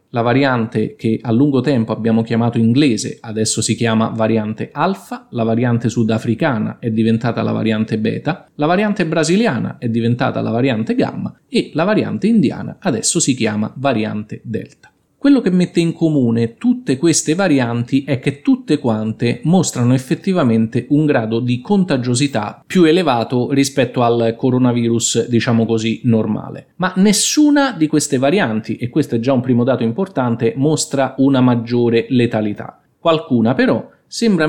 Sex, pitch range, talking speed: male, 115-150 Hz, 150 wpm